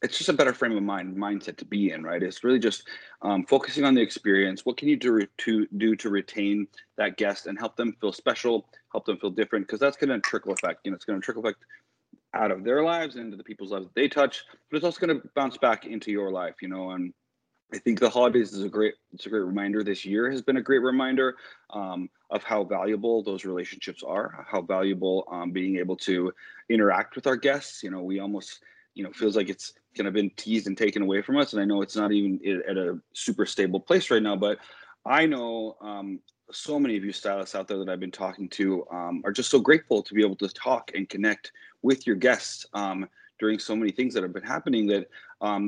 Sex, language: male, English